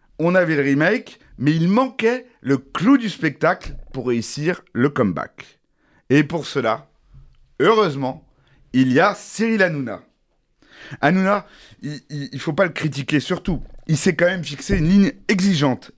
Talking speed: 155 wpm